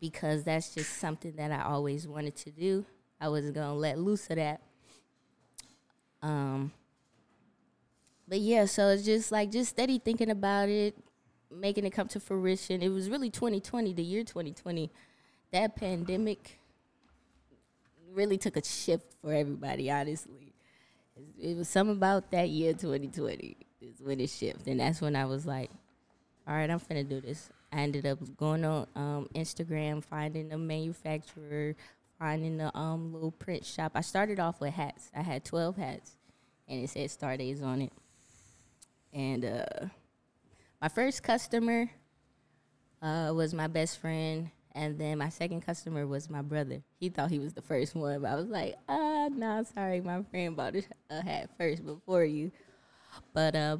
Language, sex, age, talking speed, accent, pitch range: English, female, 20-39, 165 wpm, American, 145-185 Hz